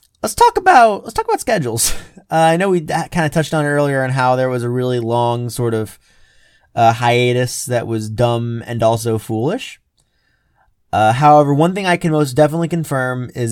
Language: English